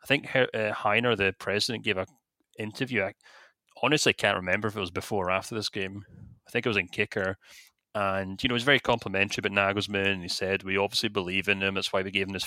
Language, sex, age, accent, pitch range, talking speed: English, male, 30-49, British, 100-125 Hz, 235 wpm